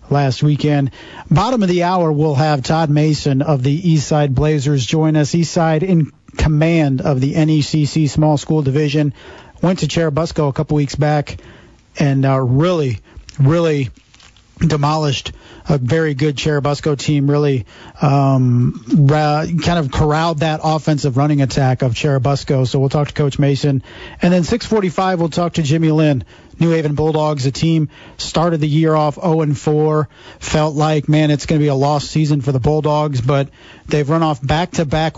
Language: English